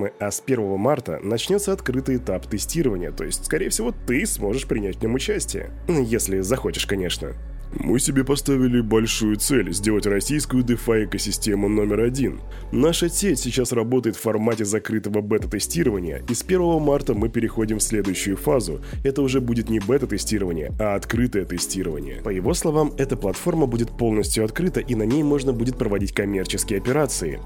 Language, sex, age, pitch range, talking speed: Russian, male, 20-39, 105-140 Hz, 160 wpm